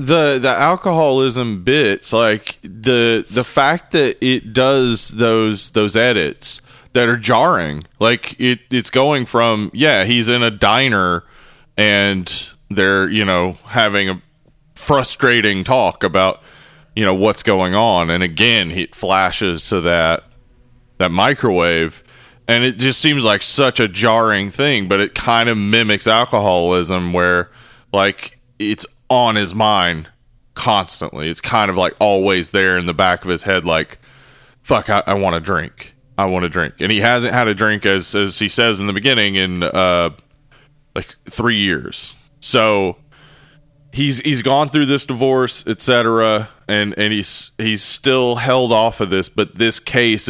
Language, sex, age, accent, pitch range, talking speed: English, male, 20-39, American, 95-125 Hz, 155 wpm